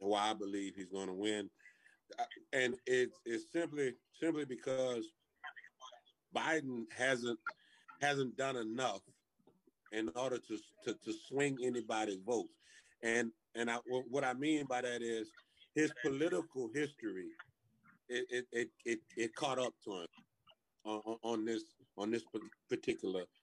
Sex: male